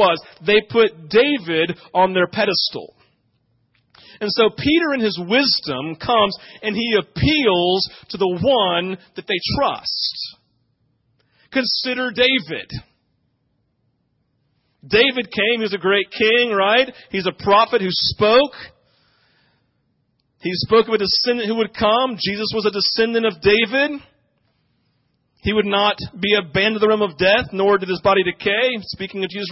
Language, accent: English, American